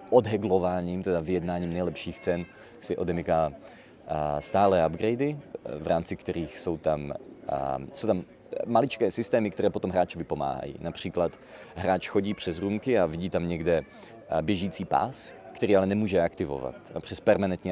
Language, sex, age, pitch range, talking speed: Czech, male, 30-49, 80-100 Hz, 130 wpm